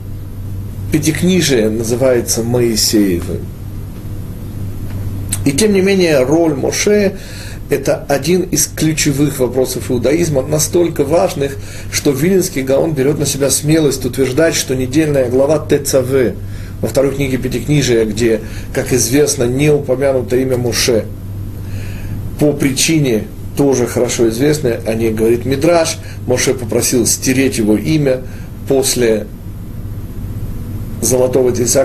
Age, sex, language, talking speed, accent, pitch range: 40-59, male, Russian, 110 wpm, native, 105-145 Hz